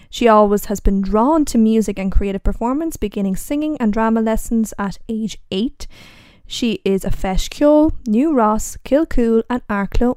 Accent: Irish